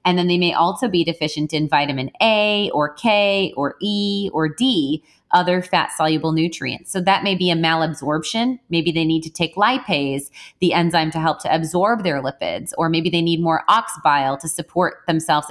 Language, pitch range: English, 155-185 Hz